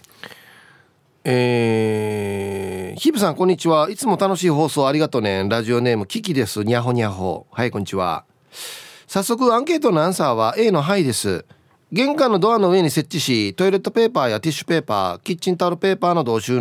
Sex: male